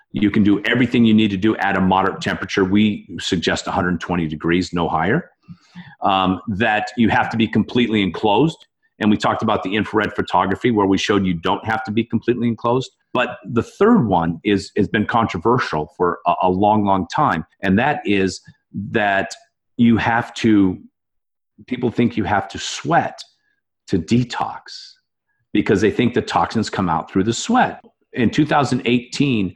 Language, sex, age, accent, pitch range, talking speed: English, male, 40-59, American, 95-120 Hz, 170 wpm